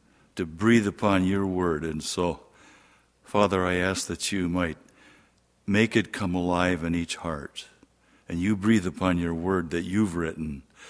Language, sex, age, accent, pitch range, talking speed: English, male, 60-79, American, 90-115 Hz, 160 wpm